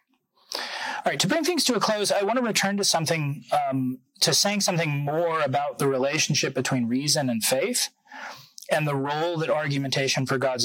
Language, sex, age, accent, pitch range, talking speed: English, male, 30-49, American, 130-200 Hz, 185 wpm